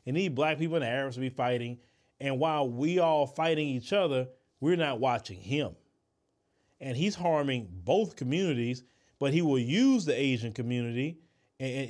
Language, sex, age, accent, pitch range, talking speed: English, male, 30-49, American, 125-175 Hz, 170 wpm